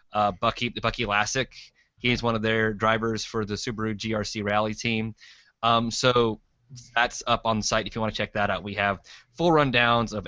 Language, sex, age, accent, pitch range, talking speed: English, male, 20-39, American, 105-120 Hz, 200 wpm